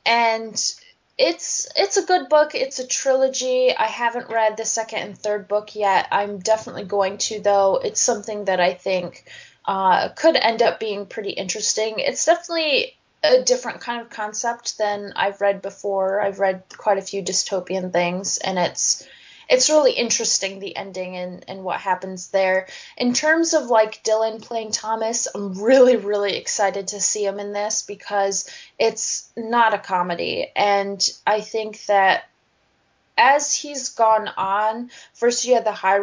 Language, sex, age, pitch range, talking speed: English, female, 20-39, 195-245 Hz, 165 wpm